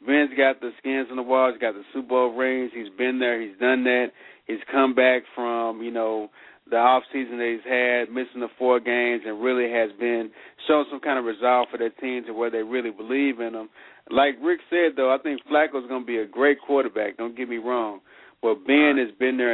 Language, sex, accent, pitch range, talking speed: English, male, American, 115-135 Hz, 230 wpm